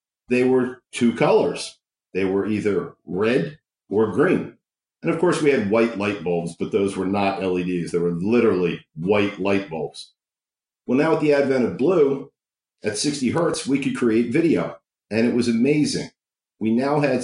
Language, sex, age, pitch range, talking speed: English, male, 50-69, 110-150 Hz, 175 wpm